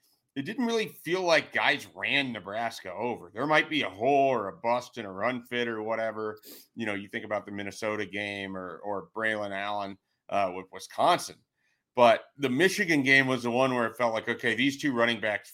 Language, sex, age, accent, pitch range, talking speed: English, male, 30-49, American, 105-135 Hz, 210 wpm